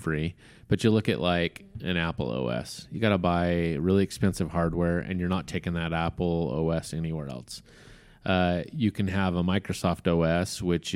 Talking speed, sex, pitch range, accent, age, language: 180 wpm, male, 85-100 Hz, American, 30-49, English